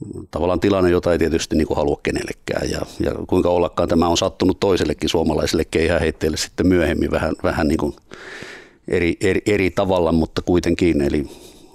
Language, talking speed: Finnish, 165 wpm